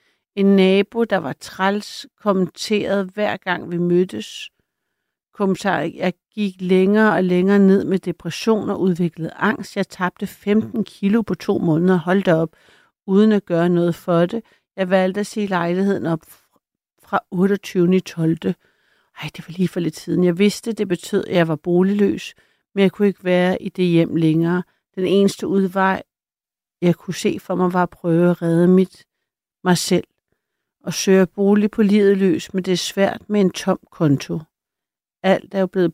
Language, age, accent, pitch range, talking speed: Danish, 60-79, native, 175-205 Hz, 175 wpm